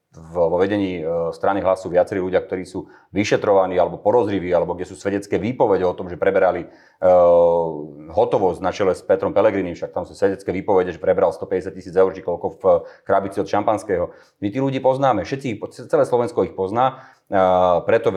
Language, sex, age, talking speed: Slovak, male, 30-49, 170 wpm